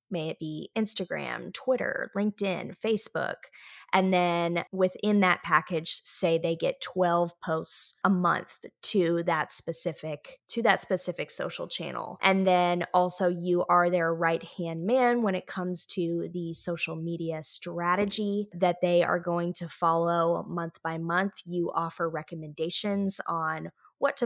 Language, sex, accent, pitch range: English, female, American, 170-215 Hz